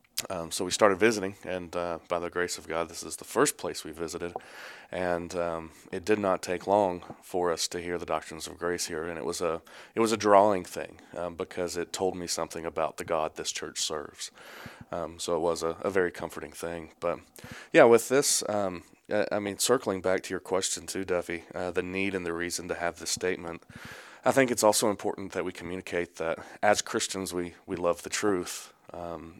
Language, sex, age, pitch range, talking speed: English, male, 30-49, 85-95 Hz, 215 wpm